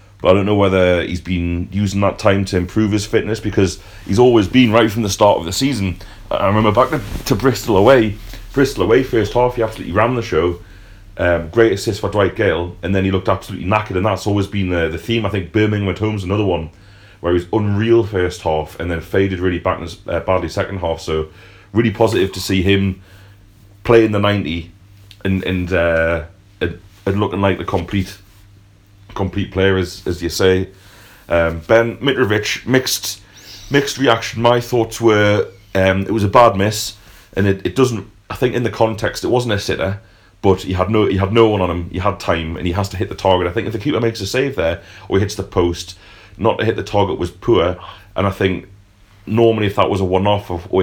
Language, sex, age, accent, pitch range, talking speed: English, male, 30-49, British, 95-105 Hz, 215 wpm